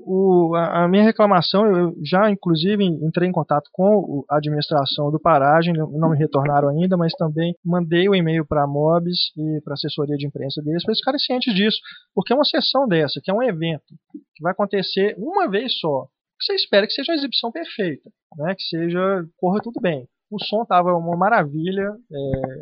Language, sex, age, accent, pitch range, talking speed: Portuguese, male, 20-39, Brazilian, 155-205 Hz, 200 wpm